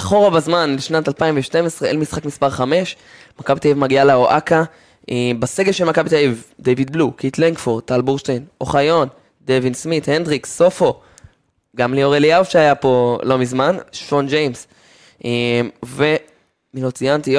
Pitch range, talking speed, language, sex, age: 125-155 Hz, 140 wpm, Hebrew, male, 20-39